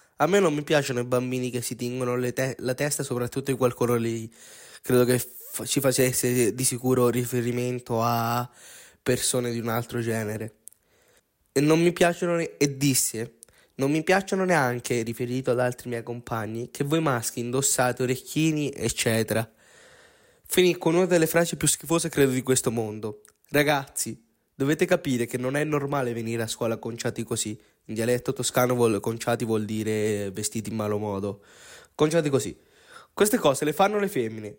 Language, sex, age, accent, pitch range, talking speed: Italian, male, 20-39, native, 115-150 Hz, 165 wpm